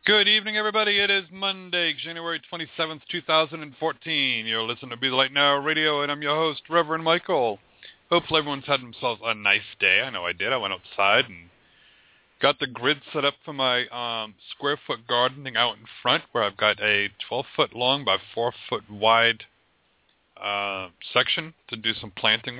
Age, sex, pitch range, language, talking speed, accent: 40-59, male, 110-150 Hz, English, 180 wpm, American